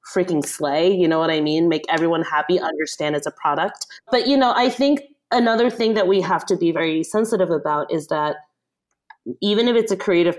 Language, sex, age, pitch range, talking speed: English, female, 30-49, 155-190 Hz, 210 wpm